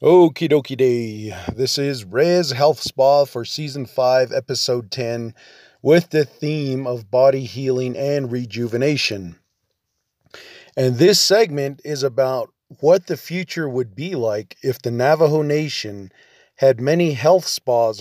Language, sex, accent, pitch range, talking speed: English, male, American, 120-150 Hz, 135 wpm